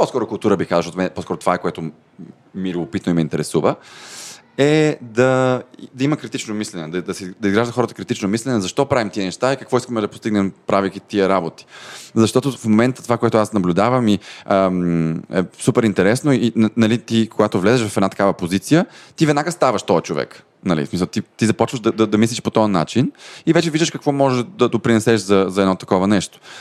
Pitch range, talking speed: 95-130 Hz, 195 wpm